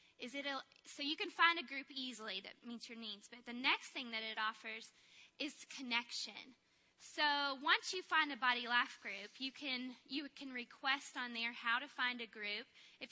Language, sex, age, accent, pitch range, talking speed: English, female, 10-29, American, 230-280 Hz, 200 wpm